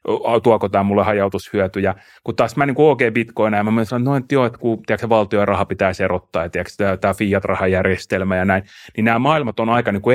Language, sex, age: Finnish, male, 30-49